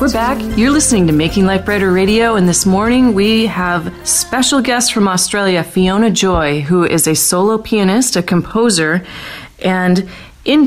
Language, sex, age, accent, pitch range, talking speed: English, female, 30-49, American, 170-210 Hz, 165 wpm